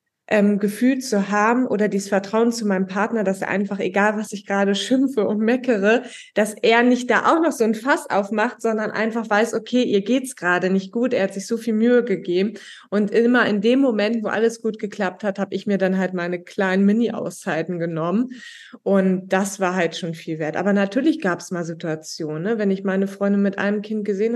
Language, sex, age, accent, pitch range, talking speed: German, female, 20-39, German, 205-250 Hz, 215 wpm